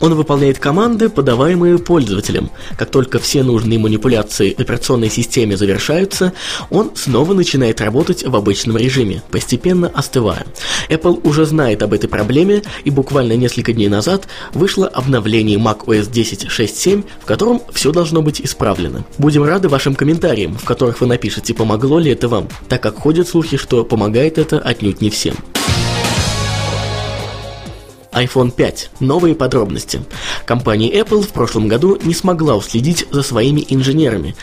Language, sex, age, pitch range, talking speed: Russian, male, 20-39, 110-160 Hz, 140 wpm